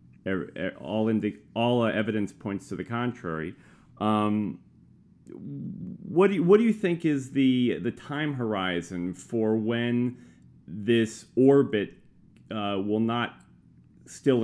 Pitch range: 95-120 Hz